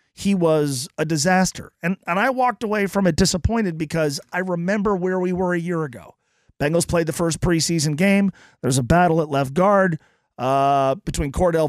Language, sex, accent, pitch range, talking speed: English, male, American, 140-185 Hz, 185 wpm